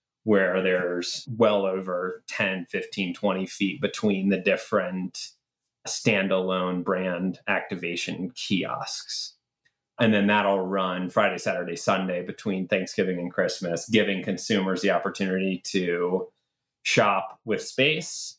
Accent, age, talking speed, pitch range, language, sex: American, 30-49, 110 wpm, 95-105 Hz, English, male